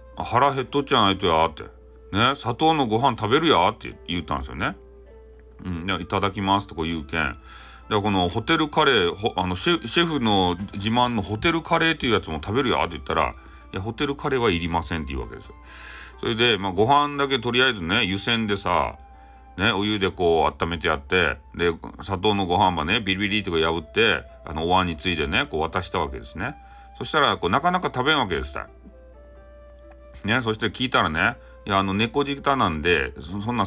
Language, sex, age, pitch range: Japanese, male, 40-59, 80-120 Hz